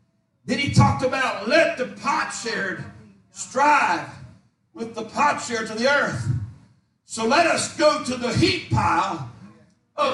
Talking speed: 150 wpm